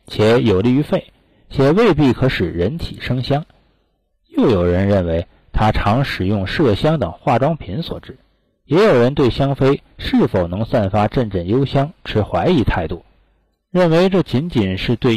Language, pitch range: Chinese, 100-145 Hz